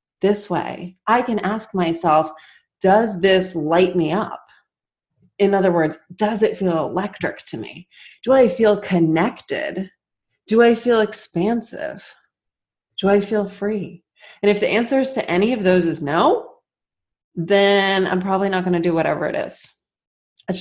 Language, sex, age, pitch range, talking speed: English, female, 30-49, 180-215 Hz, 155 wpm